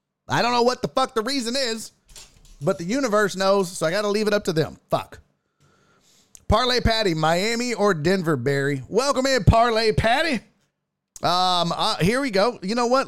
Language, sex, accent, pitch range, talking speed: English, male, American, 125-190 Hz, 190 wpm